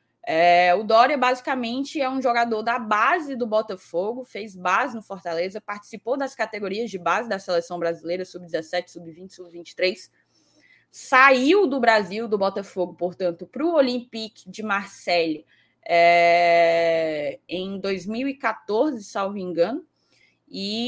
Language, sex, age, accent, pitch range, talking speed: Portuguese, female, 10-29, Brazilian, 190-250 Hz, 120 wpm